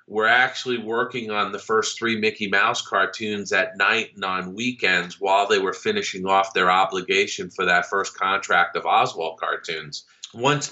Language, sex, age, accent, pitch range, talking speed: English, male, 40-59, American, 95-120 Hz, 175 wpm